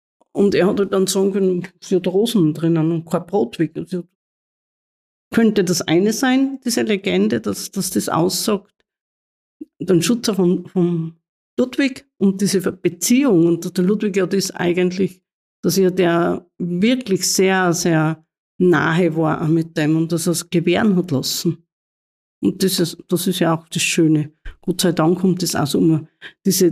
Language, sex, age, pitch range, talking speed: German, female, 50-69, 165-195 Hz, 165 wpm